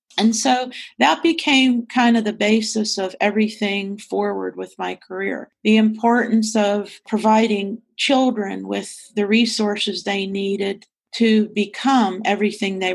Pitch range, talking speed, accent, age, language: 195-225 Hz, 130 wpm, American, 40-59, English